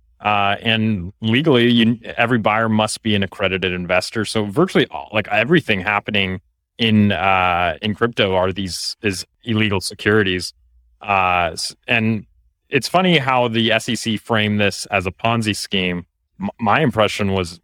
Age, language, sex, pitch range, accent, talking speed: 30-49, English, male, 95-120 Hz, American, 145 wpm